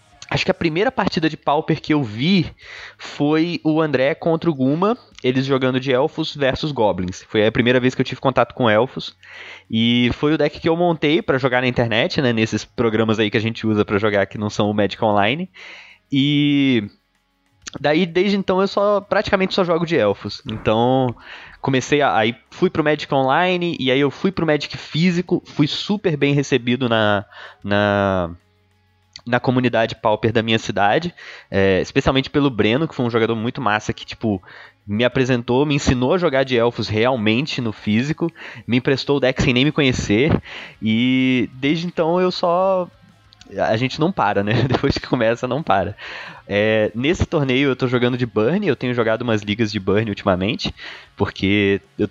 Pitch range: 110-145 Hz